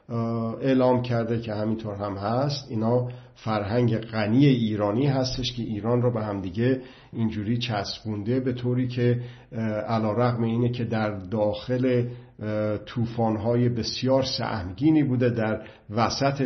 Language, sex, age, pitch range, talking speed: Persian, male, 50-69, 105-125 Hz, 115 wpm